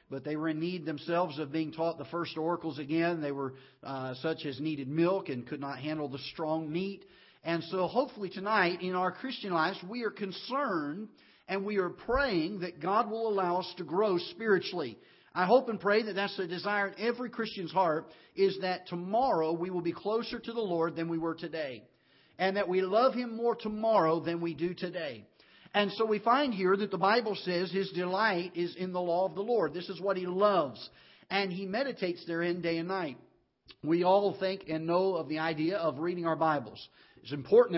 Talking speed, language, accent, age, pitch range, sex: 210 wpm, English, American, 50-69, 160-195 Hz, male